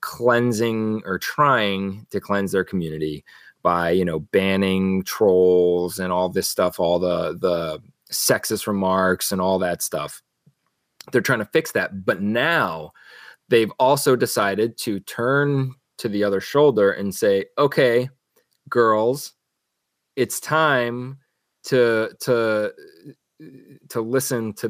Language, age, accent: English, 20-39, American